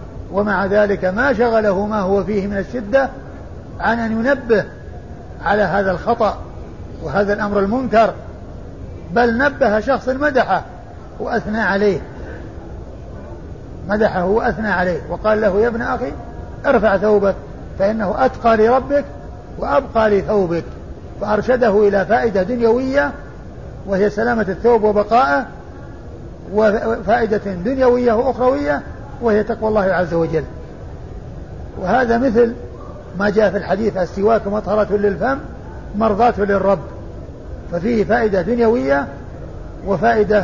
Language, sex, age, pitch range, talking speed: Arabic, male, 50-69, 195-230 Hz, 105 wpm